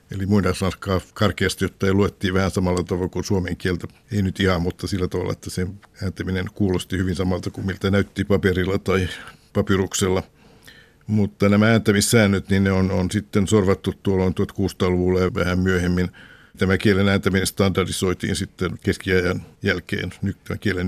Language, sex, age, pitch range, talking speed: Finnish, male, 60-79, 90-100 Hz, 155 wpm